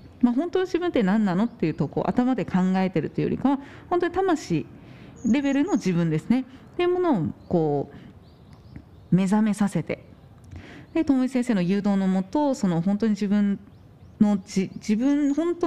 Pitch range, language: 170-240 Hz, Japanese